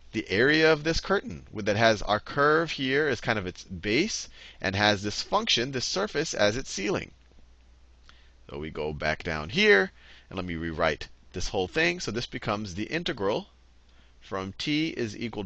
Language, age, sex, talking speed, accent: English, 30-49, male, 180 wpm, American